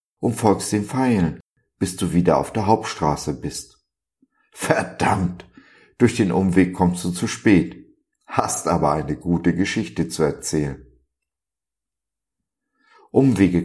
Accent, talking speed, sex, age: German, 120 wpm, male, 50-69